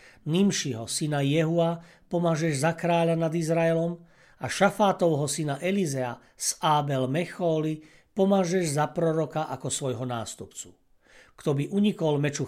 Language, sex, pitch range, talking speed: Slovak, male, 135-170 Hz, 120 wpm